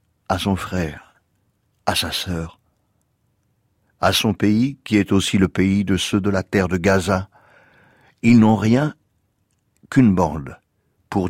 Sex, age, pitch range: male, 60-79, 95-110 Hz